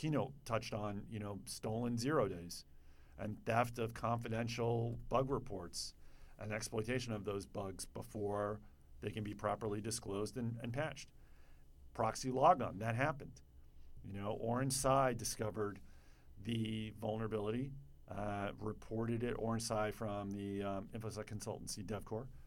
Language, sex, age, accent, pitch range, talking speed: English, male, 50-69, American, 100-120 Hz, 135 wpm